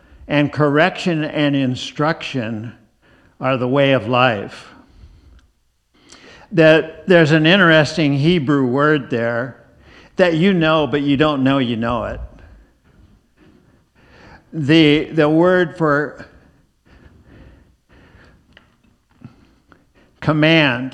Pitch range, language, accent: 115-150 Hz, English, American